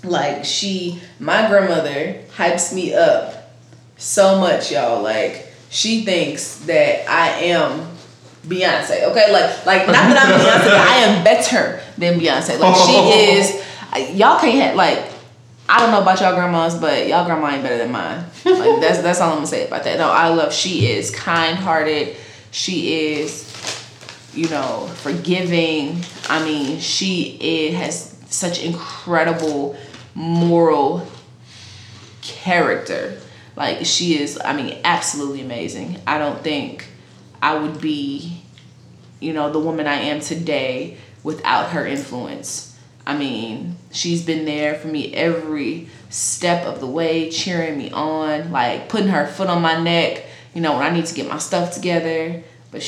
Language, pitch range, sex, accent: English, 145-175 Hz, female, American